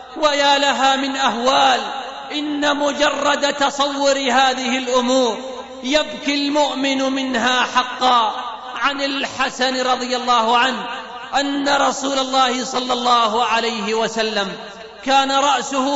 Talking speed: 100 wpm